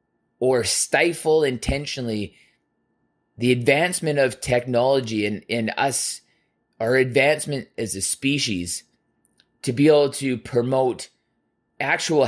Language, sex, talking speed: English, male, 105 wpm